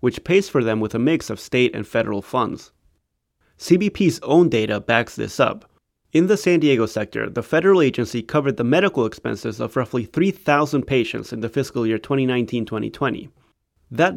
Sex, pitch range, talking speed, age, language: male, 115-155 Hz, 170 wpm, 30-49, English